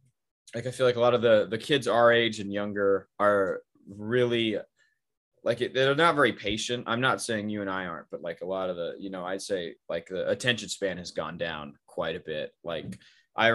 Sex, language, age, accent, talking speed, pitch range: male, English, 20-39, American, 220 wpm, 95-120 Hz